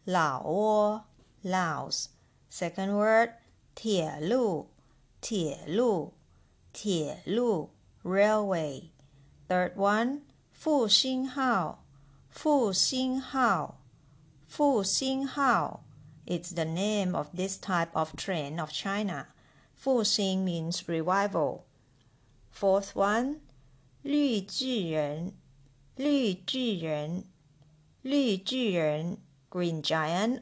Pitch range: 155-230 Hz